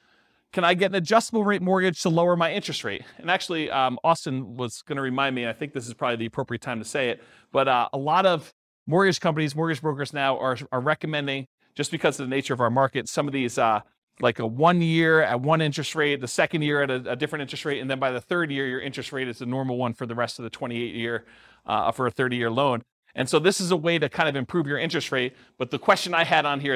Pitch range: 120-160 Hz